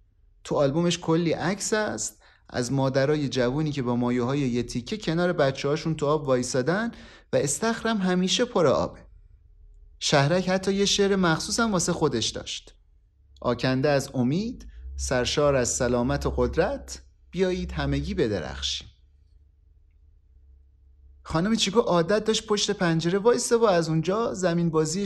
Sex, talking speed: male, 130 wpm